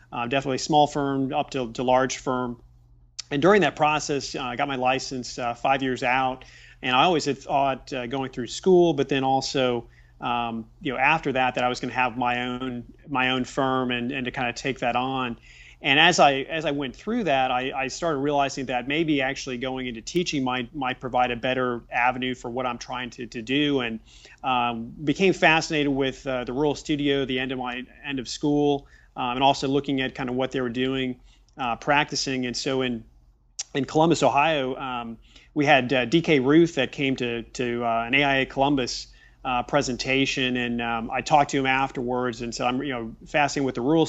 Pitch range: 125-140 Hz